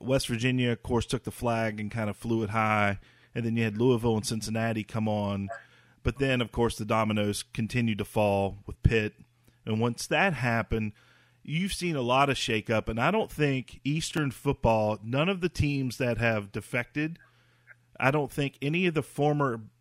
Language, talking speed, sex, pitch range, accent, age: English, 190 wpm, male, 110-130 Hz, American, 40-59